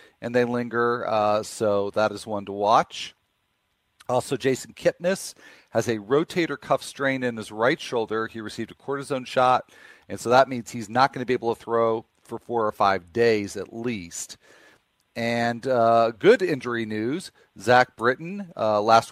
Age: 40-59